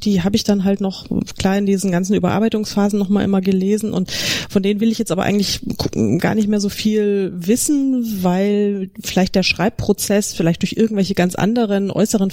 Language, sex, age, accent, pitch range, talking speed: German, female, 30-49, German, 165-200 Hz, 185 wpm